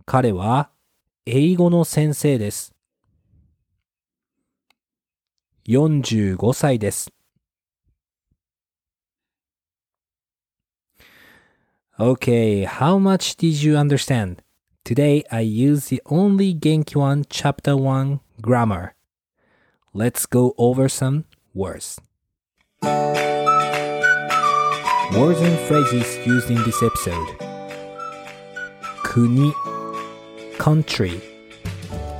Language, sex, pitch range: Japanese, male, 100-145 Hz